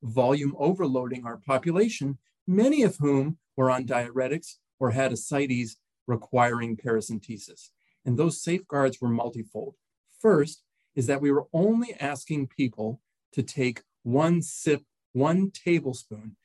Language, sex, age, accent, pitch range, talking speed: English, male, 40-59, American, 120-155 Hz, 125 wpm